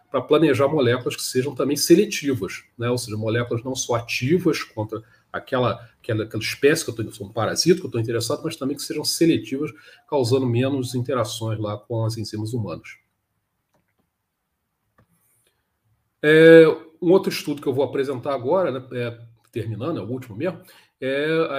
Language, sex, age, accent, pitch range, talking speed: Portuguese, male, 40-59, Brazilian, 115-150 Hz, 160 wpm